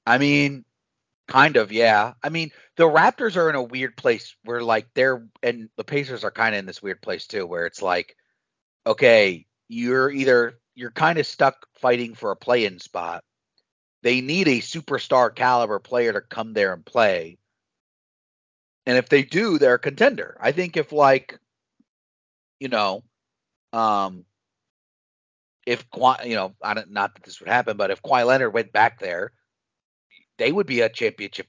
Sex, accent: male, American